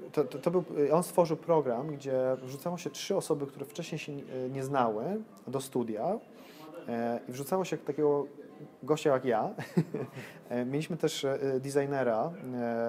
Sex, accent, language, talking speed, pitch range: male, native, Polish, 155 wpm, 125-150 Hz